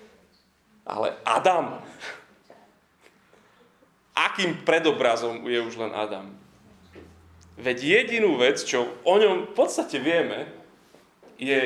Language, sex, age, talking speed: Slovak, male, 30-49, 95 wpm